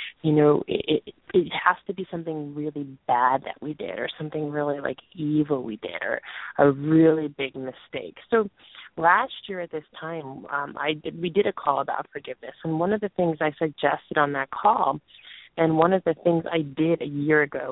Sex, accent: female, American